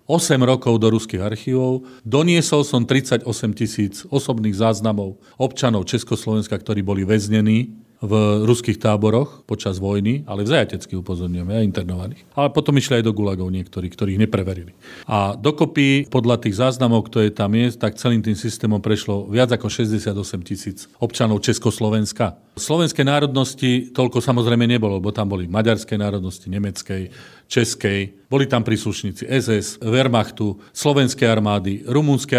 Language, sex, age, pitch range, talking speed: Slovak, male, 40-59, 100-125 Hz, 140 wpm